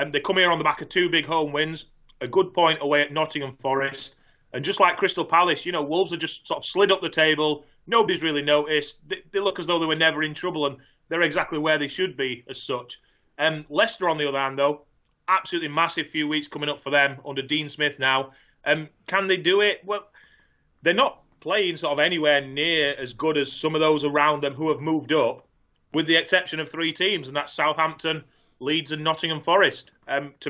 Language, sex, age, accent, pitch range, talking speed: English, male, 30-49, British, 140-160 Hz, 230 wpm